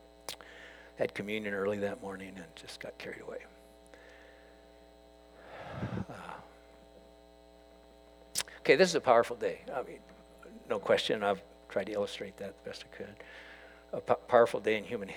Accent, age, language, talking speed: American, 60-79, English, 140 wpm